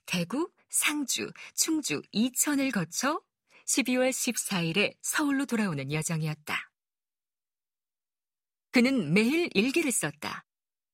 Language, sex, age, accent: Korean, female, 40-59, native